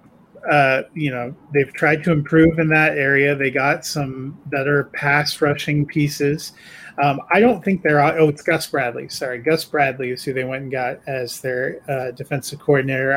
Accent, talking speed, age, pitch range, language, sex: American, 180 wpm, 30-49, 130-155 Hz, English, male